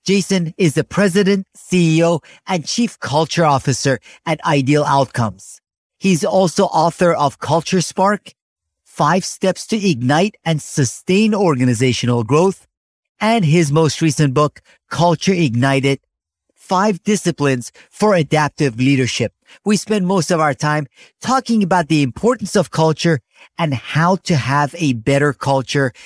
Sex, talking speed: male, 130 wpm